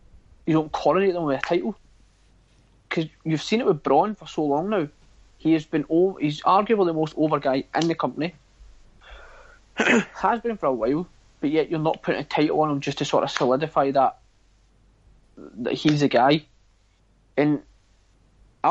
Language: English